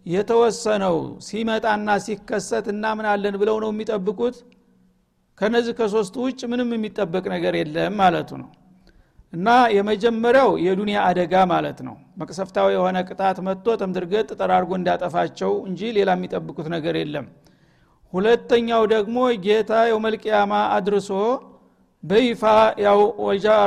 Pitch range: 185-220 Hz